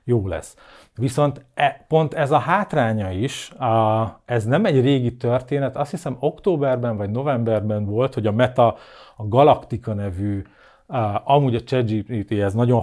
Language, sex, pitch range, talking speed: Hungarian, male, 105-135 Hz, 160 wpm